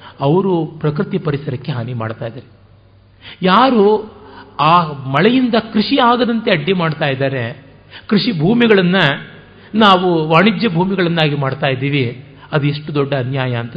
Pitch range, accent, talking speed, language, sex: 125-195 Hz, native, 110 wpm, Kannada, male